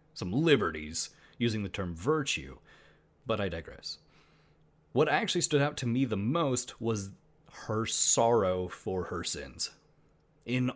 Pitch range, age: 100-135 Hz, 30-49